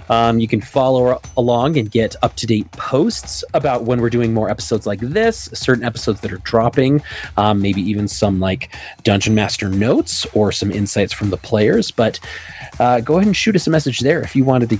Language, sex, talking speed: English, male, 205 wpm